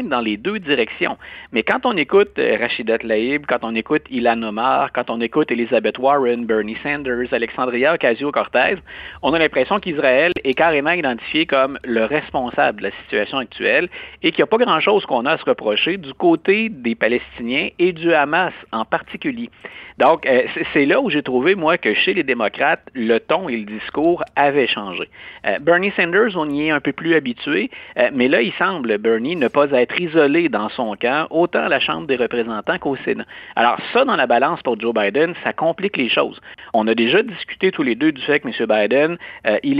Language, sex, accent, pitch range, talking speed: French, male, Canadian, 120-195 Hz, 195 wpm